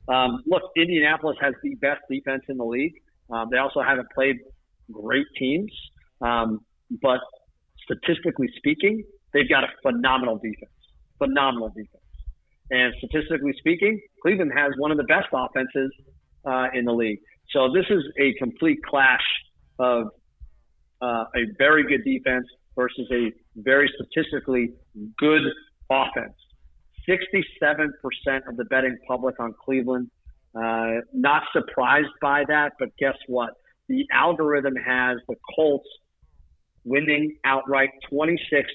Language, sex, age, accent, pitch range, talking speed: English, male, 50-69, American, 125-145 Hz, 130 wpm